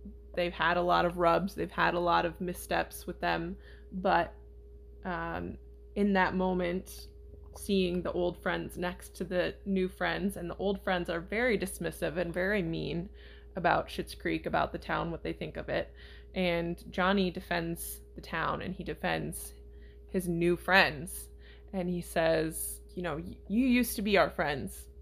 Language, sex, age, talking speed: English, female, 20-39, 170 wpm